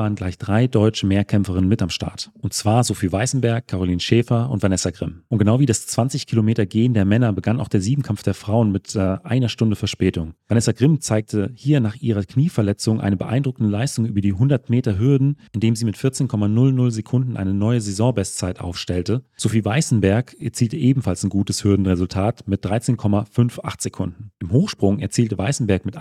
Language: German